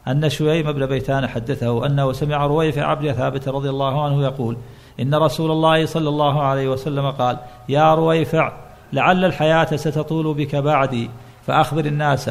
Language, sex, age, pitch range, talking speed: Arabic, male, 50-69, 135-155 Hz, 150 wpm